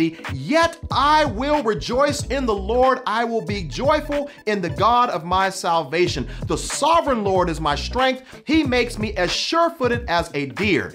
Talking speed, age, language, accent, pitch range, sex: 170 wpm, 40-59, English, American, 190-270 Hz, male